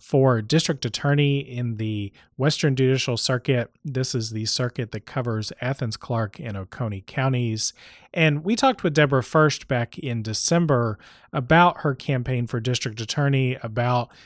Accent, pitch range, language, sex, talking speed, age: American, 110-140 Hz, English, male, 145 wpm, 30-49